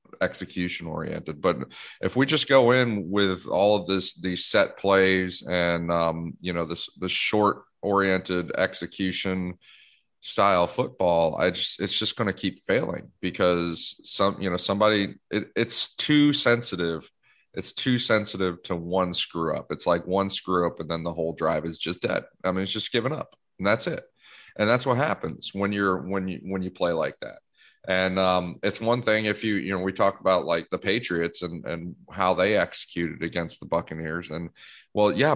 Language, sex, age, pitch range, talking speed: English, male, 30-49, 90-100 Hz, 185 wpm